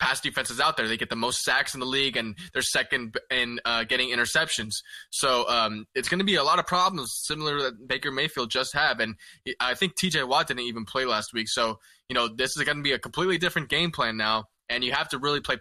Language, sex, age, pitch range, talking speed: English, male, 20-39, 120-160 Hz, 260 wpm